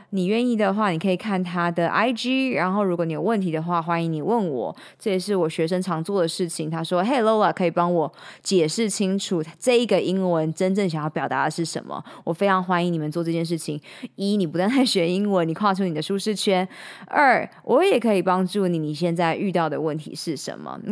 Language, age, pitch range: Chinese, 20-39, 170-230 Hz